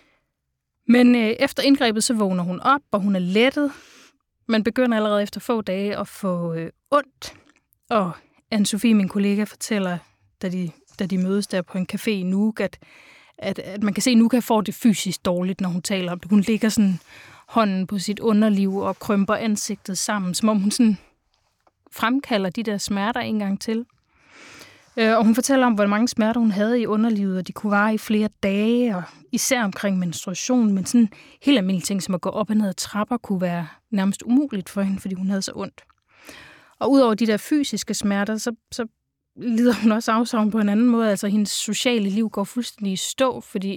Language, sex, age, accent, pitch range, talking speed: Danish, female, 20-39, native, 195-225 Hz, 195 wpm